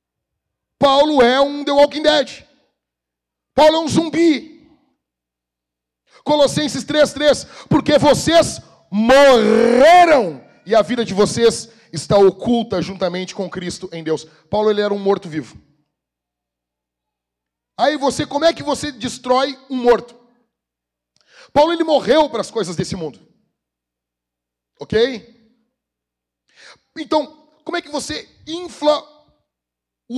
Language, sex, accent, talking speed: Portuguese, male, Brazilian, 115 wpm